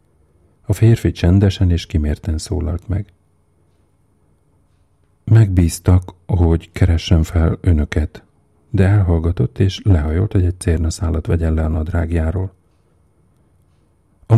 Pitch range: 80-95 Hz